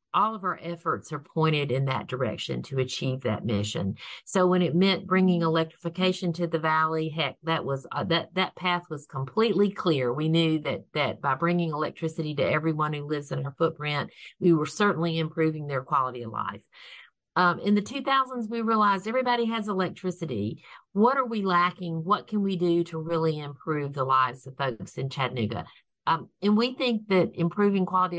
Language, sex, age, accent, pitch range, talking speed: English, female, 50-69, American, 145-185 Hz, 185 wpm